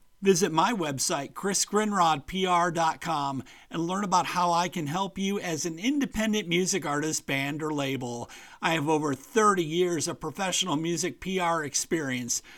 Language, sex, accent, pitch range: English, male, American, 150-185 Hz